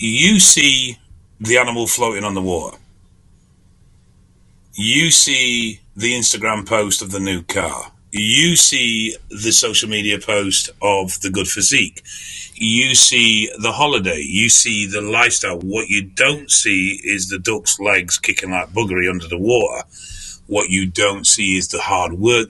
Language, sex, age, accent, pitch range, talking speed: English, male, 40-59, British, 90-110 Hz, 150 wpm